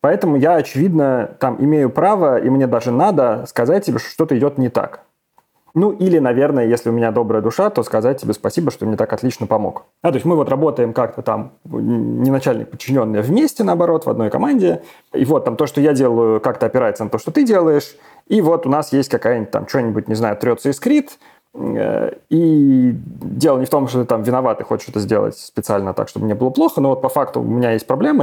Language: Russian